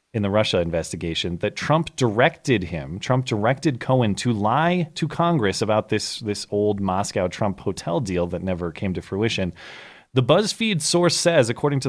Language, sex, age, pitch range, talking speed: English, male, 30-49, 100-145 Hz, 170 wpm